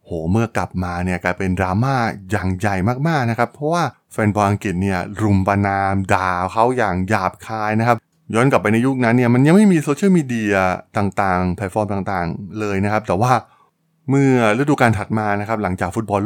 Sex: male